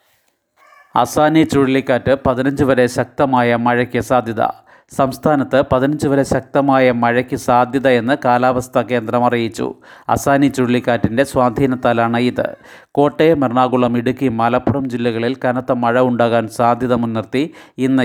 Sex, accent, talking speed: male, native, 105 wpm